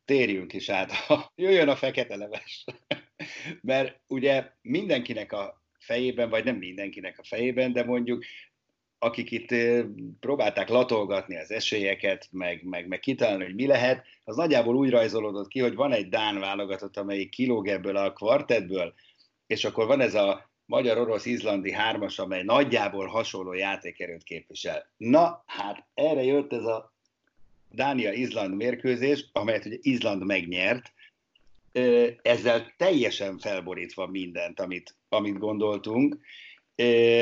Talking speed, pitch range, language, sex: 125 wpm, 100-135 Hz, Hungarian, male